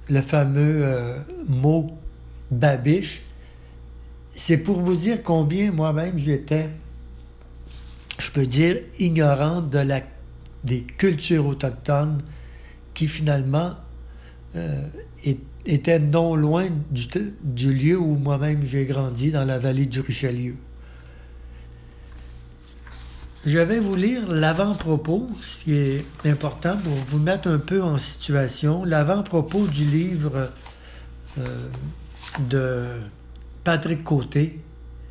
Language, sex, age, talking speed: French, male, 60-79, 105 wpm